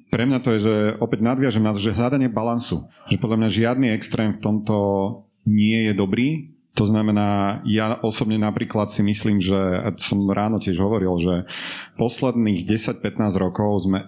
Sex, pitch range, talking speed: male, 95-115 Hz, 165 wpm